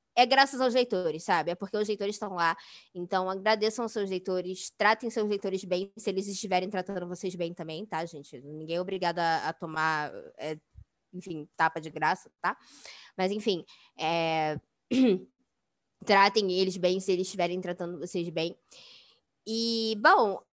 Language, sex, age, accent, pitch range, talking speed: Portuguese, female, 10-29, Brazilian, 185-245 Hz, 160 wpm